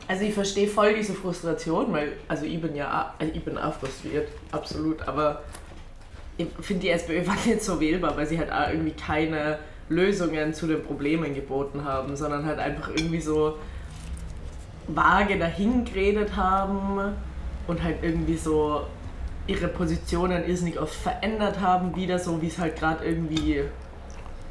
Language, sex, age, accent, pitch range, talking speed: German, female, 20-39, German, 145-170 Hz, 155 wpm